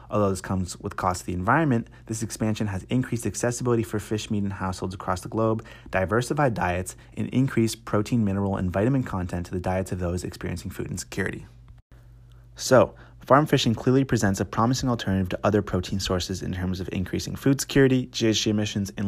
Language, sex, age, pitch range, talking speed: English, male, 30-49, 95-120 Hz, 185 wpm